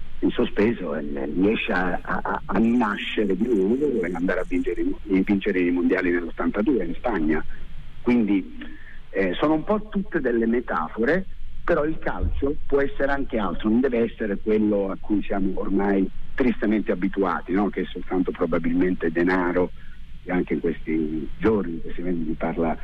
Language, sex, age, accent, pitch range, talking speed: Italian, male, 50-69, native, 90-120 Hz, 150 wpm